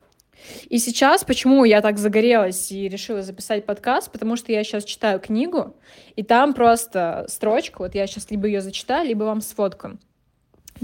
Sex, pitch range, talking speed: female, 205-245 Hz, 160 wpm